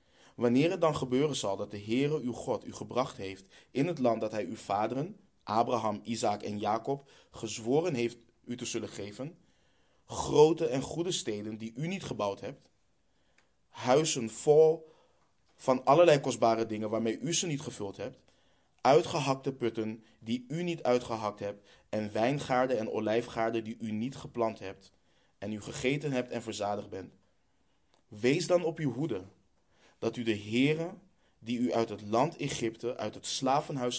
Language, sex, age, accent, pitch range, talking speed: Dutch, male, 20-39, Dutch, 110-135 Hz, 160 wpm